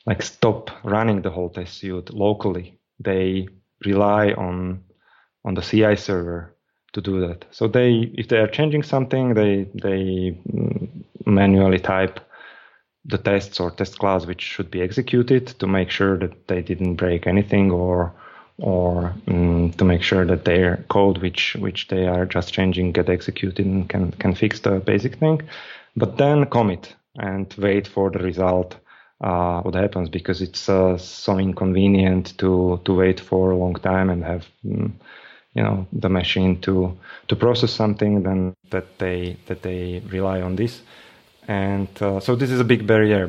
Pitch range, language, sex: 90-100 Hz, English, male